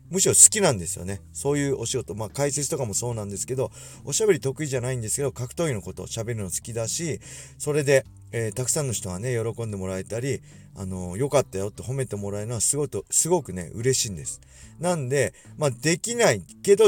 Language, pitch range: Japanese, 100-140 Hz